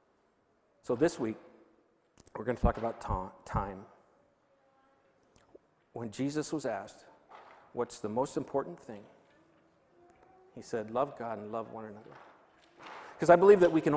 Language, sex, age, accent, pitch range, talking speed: English, male, 50-69, American, 115-155 Hz, 140 wpm